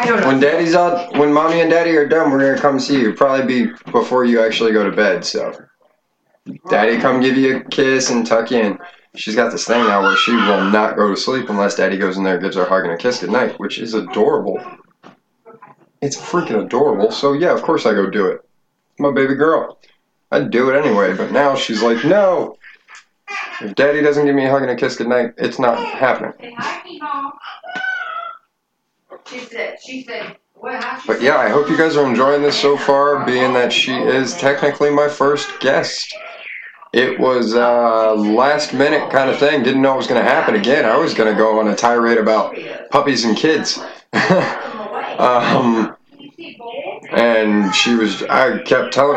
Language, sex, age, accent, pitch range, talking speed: English, male, 20-39, American, 115-165 Hz, 190 wpm